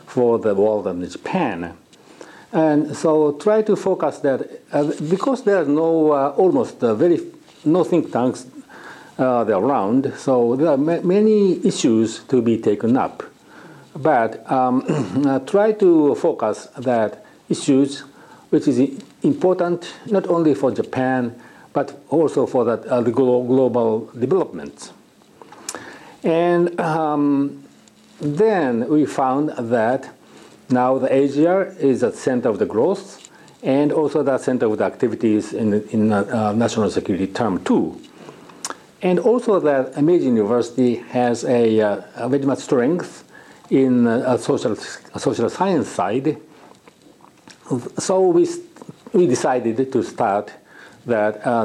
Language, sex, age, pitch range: Japanese, male, 60-79, 120-175 Hz